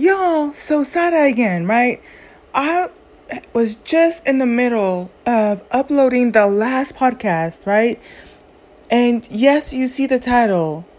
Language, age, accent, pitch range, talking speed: English, 30-49, American, 225-285 Hz, 125 wpm